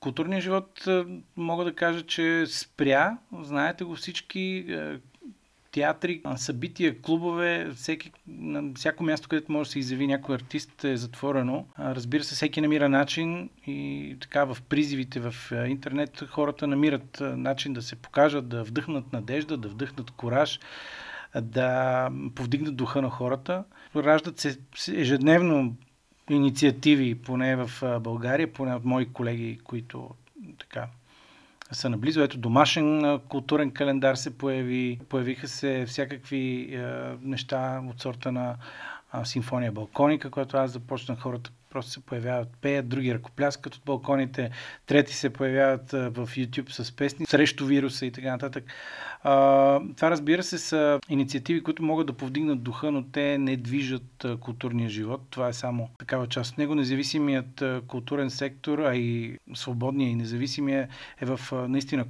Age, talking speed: 40-59, 135 wpm